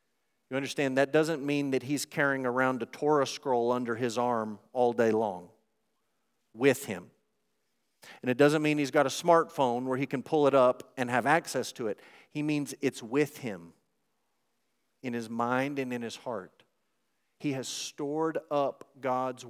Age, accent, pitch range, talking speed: 50-69, American, 120-145 Hz, 170 wpm